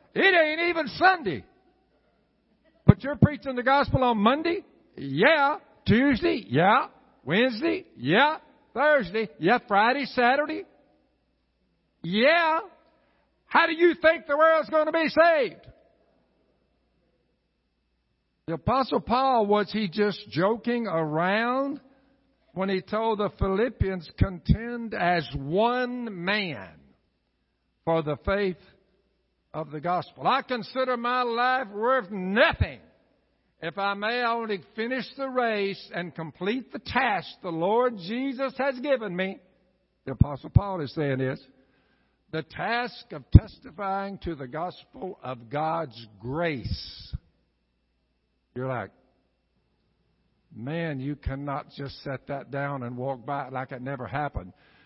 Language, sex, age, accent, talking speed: English, male, 60-79, American, 120 wpm